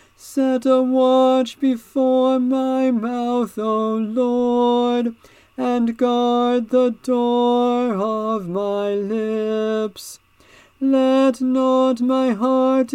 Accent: American